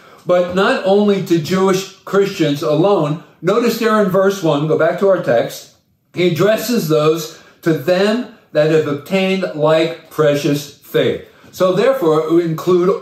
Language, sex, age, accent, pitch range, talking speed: English, male, 50-69, American, 145-190 Hz, 145 wpm